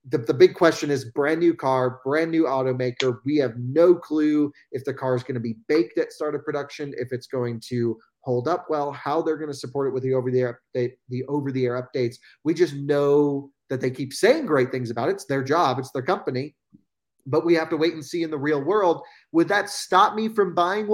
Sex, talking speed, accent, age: male, 230 wpm, American, 30-49